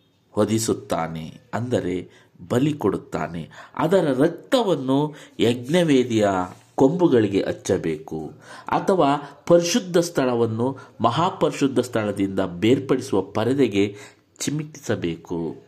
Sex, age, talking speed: male, 50-69, 65 wpm